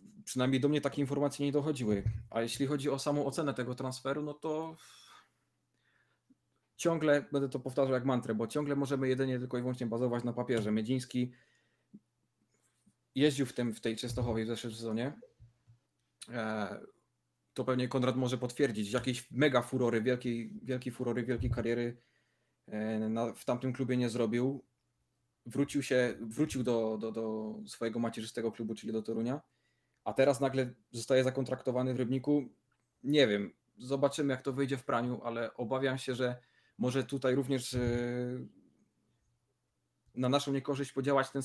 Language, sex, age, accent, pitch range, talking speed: Polish, male, 20-39, native, 115-140 Hz, 145 wpm